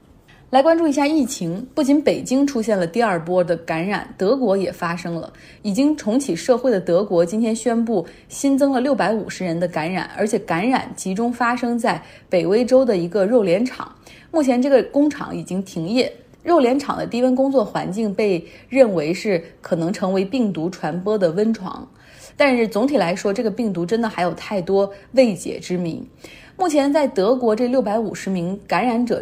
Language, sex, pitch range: Chinese, female, 180-250 Hz